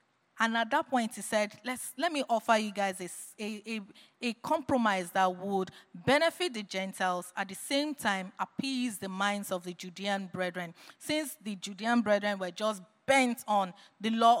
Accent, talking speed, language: Nigerian, 175 wpm, English